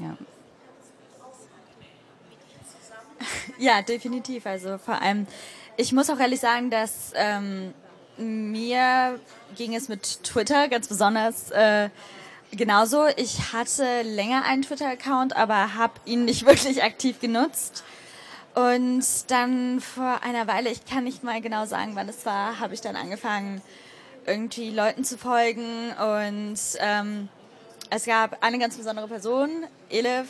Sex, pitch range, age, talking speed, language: female, 215-250 Hz, 10-29, 125 wpm, German